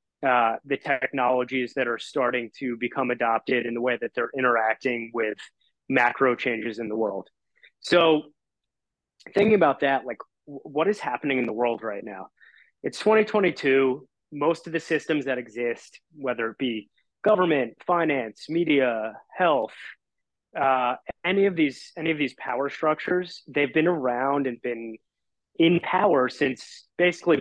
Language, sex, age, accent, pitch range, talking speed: English, male, 30-49, American, 120-155 Hz, 140 wpm